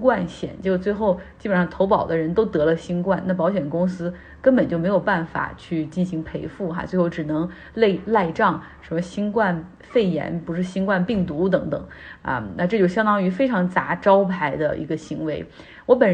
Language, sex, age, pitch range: Chinese, female, 30-49, 165-190 Hz